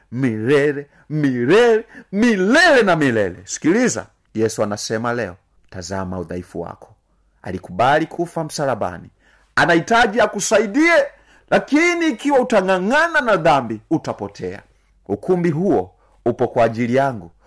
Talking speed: 95 wpm